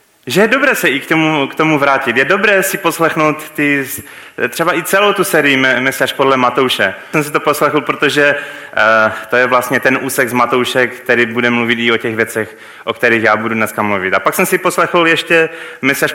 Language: Czech